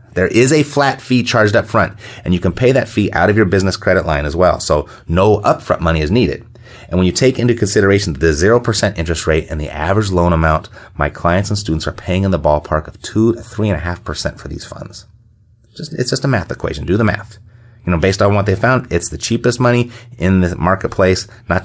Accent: American